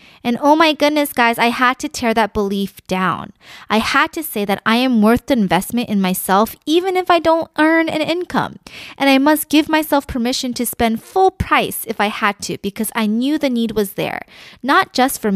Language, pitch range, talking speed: English, 195-275 Hz, 215 wpm